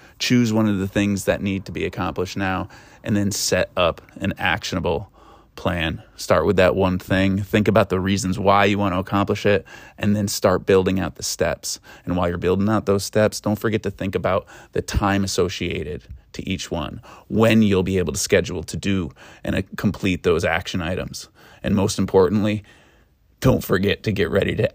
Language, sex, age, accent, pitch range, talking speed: English, male, 20-39, American, 95-115 Hz, 195 wpm